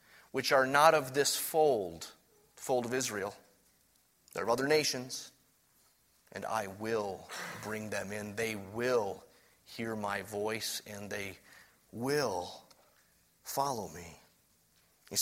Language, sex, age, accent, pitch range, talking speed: English, male, 30-49, American, 120-185 Hz, 120 wpm